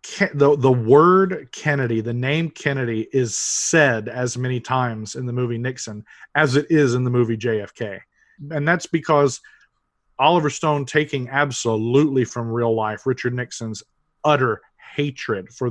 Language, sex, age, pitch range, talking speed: English, male, 40-59, 120-150 Hz, 150 wpm